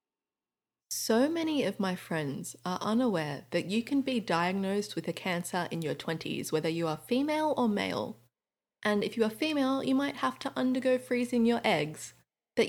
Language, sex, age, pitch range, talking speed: English, female, 20-39, 175-255 Hz, 180 wpm